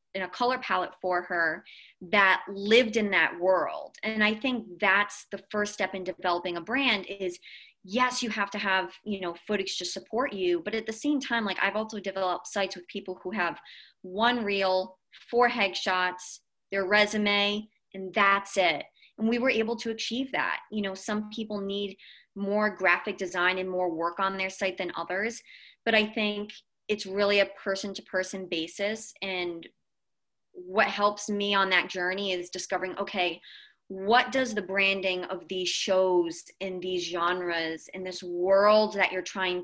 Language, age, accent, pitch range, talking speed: English, 30-49, American, 185-220 Hz, 175 wpm